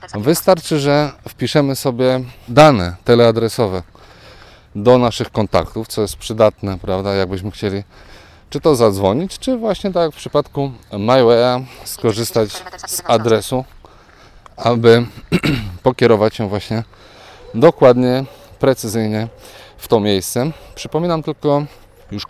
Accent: native